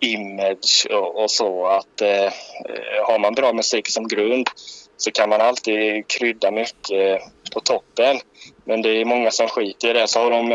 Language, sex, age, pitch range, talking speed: Swedish, male, 20-39, 100-120 Hz, 170 wpm